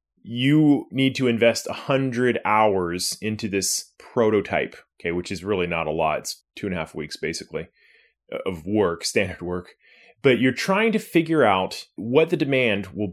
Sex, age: male, 30-49